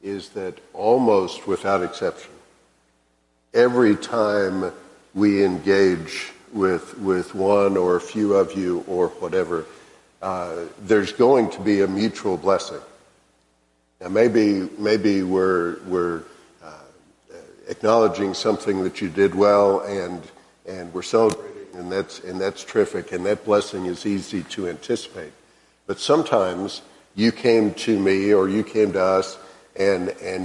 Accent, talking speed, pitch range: American, 135 wpm, 95-110 Hz